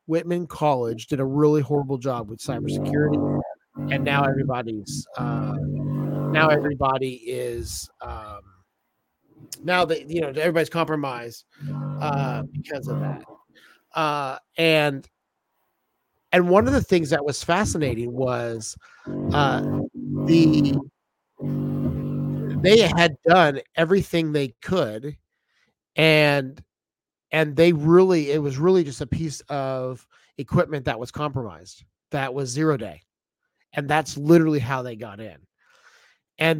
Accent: American